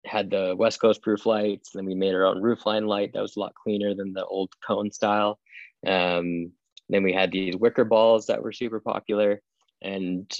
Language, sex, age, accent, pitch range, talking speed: English, male, 20-39, American, 90-105 Hz, 215 wpm